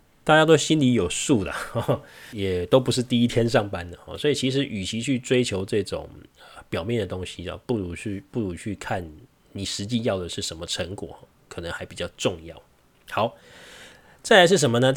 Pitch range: 95-125 Hz